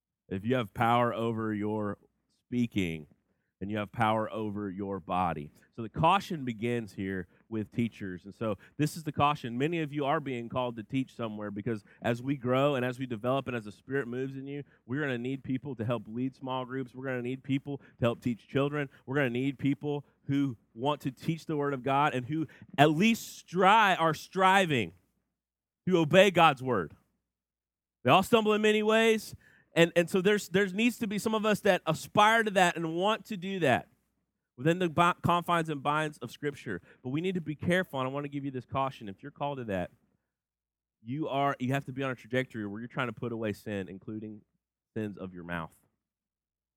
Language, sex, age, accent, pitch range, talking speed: English, male, 30-49, American, 105-150 Hz, 215 wpm